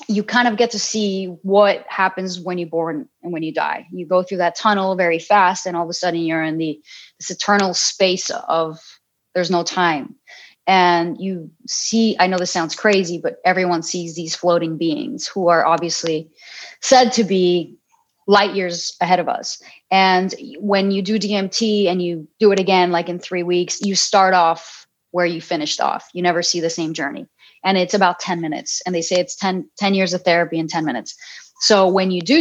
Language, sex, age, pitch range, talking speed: English, female, 30-49, 175-205 Hz, 205 wpm